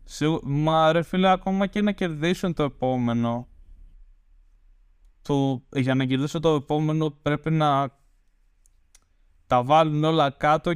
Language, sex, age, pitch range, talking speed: Greek, male, 20-39, 115-155 Hz, 125 wpm